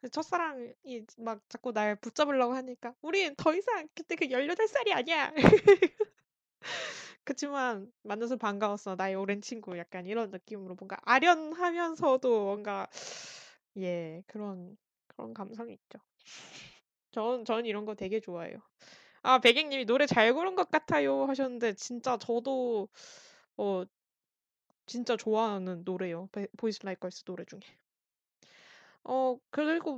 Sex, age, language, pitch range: female, 20-39, Korean, 205-260 Hz